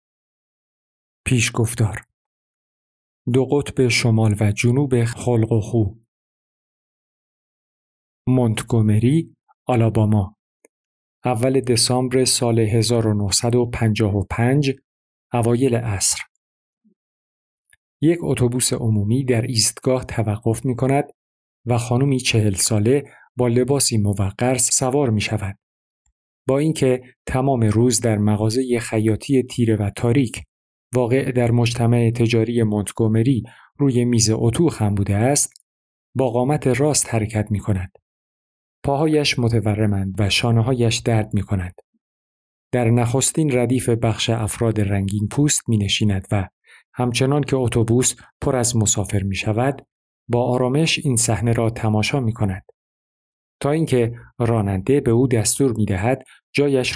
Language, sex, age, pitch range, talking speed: Persian, male, 50-69, 105-130 Hz, 110 wpm